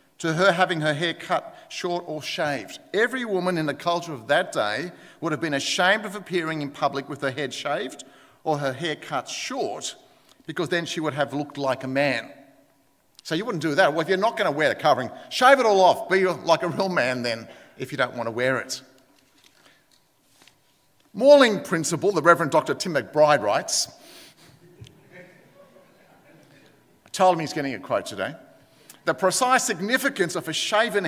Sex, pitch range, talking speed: male, 150-210 Hz, 185 wpm